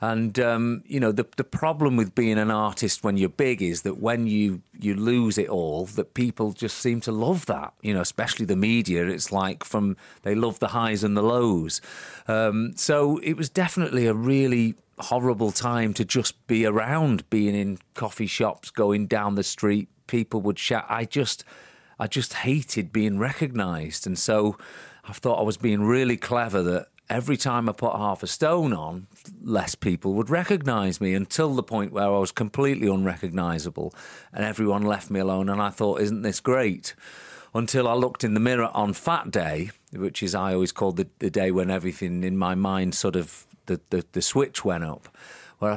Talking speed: 195 wpm